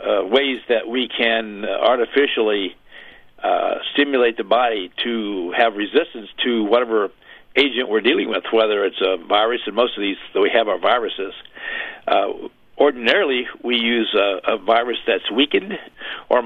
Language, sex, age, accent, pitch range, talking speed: English, male, 60-79, American, 110-135 Hz, 160 wpm